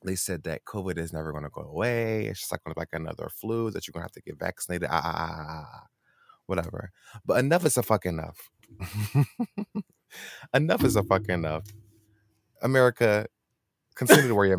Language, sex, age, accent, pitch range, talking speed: English, male, 20-39, American, 85-105 Hz, 185 wpm